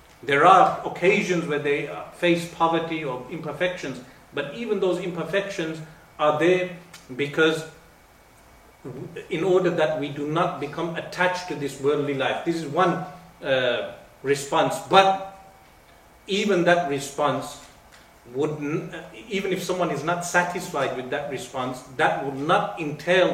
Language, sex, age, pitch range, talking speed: English, male, 40-59, 145-180 Hz, 135 wpm